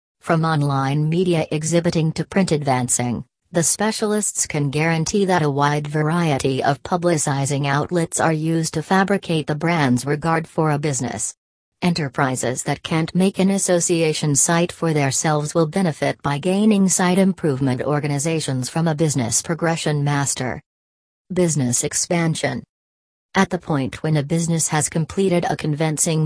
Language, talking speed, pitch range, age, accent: English, 140 wpm, 140-175 Hz, 40-59, American